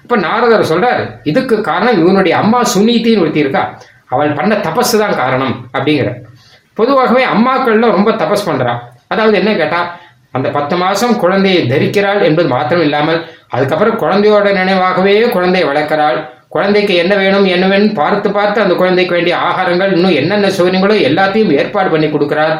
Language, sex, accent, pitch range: Tamil, male, native, 160-210 Hz